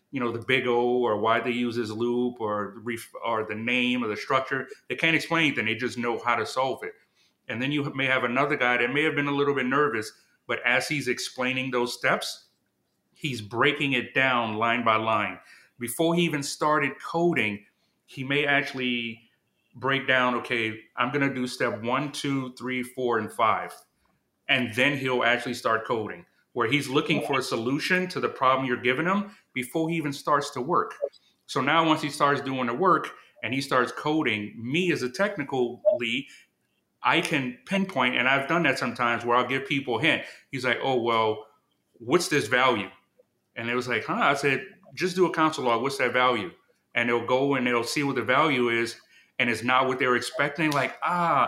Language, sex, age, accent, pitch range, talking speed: English, male, 30-49, American, 120-145 Hz, 205 wpm